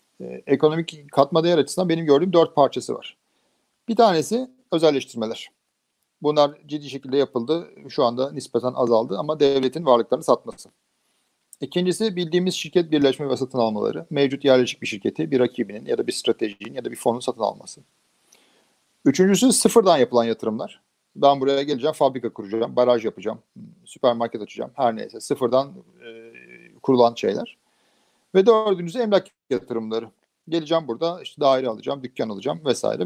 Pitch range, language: 130-175 Hz, Turkish